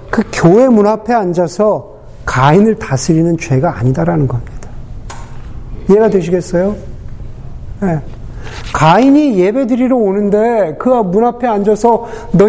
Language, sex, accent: Korean, male, native